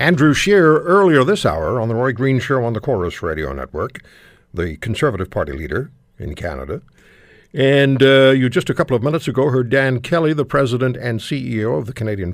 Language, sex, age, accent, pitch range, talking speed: English, male, 60-79, American, 100-150 Hz, 195 wpm